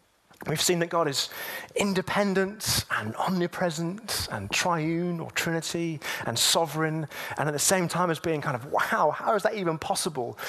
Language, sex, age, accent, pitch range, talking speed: English, male, 30-49, British, 145-190 Hz, 165 wpm